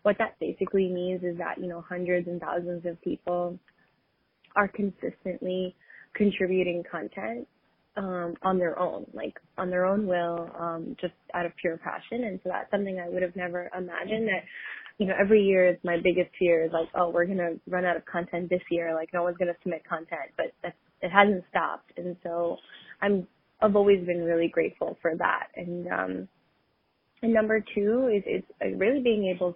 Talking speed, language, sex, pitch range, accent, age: 190 wpm, English, female, 170-190 Hz, American, 20-39